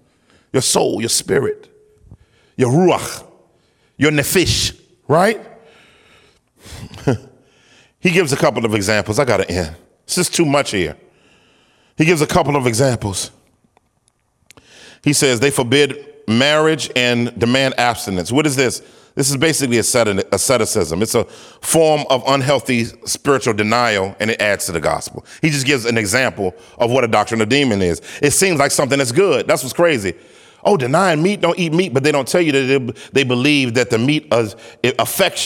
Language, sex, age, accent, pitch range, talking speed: English, male, 40-59, American, 120-155 Hz, 165 wpm